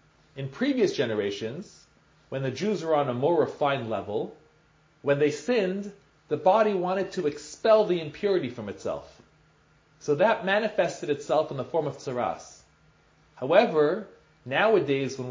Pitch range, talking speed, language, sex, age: 145-205 Hz, 140 wpm, English, male, 40-59